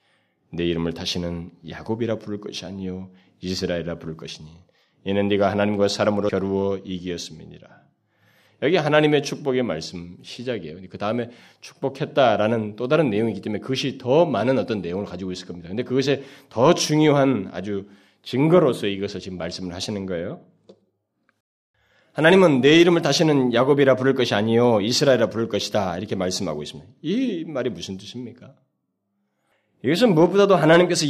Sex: male